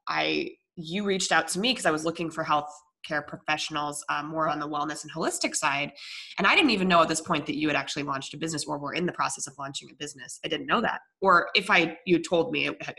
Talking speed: 260 wpm